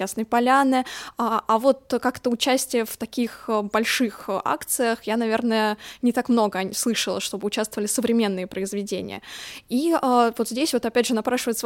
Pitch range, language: 210-245 Hz, Russian